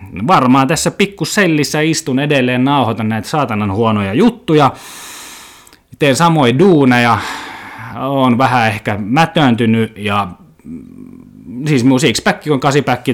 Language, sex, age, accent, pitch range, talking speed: Finnish, male, 20-39, native, 100-150 Hz, 105 wpm